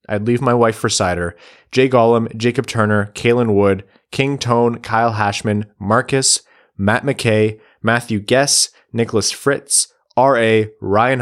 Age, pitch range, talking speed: 20-39, 100-120 Hz, 135 wpm